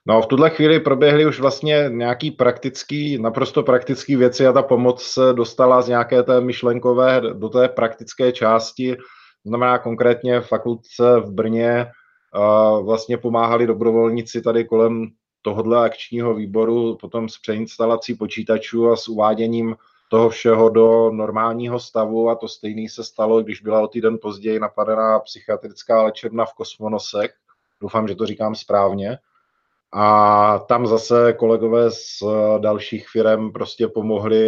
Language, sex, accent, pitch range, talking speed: Czech, male, native, 105-120 Hz, 140 wpm